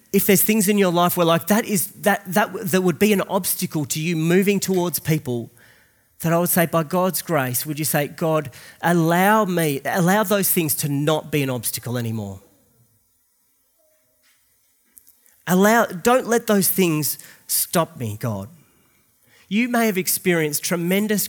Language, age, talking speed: English, 30-49, 160 wpm